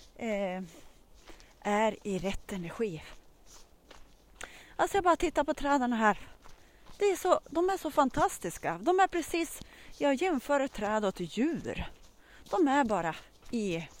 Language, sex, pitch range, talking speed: Swedish, female, 205-285 Hz, 130 wpm